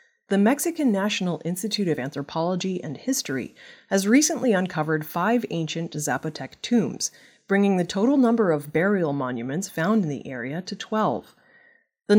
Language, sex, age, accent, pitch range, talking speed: English, female, 30-49, American, 160-230 Hz, 145 wpm